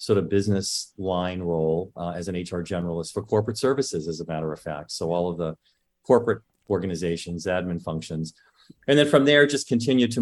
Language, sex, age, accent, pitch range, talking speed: English, male, 40-59, American, 85-100 Hz, 195 wpm